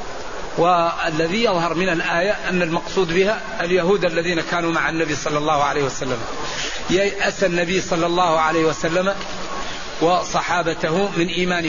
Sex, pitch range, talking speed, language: male, 175-210 Hz, 130 wpm, Arabic